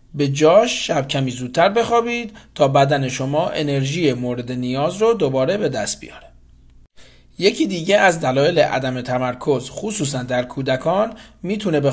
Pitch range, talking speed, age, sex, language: 130-195 Hz, 140 wpm, 30-49, male, Persian